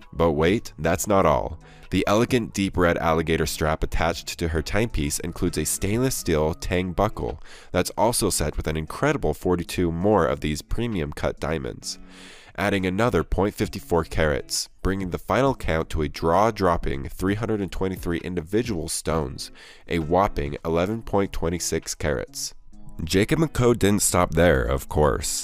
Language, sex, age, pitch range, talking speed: English, male, 20-39, 80-95 Hz, 140 wpm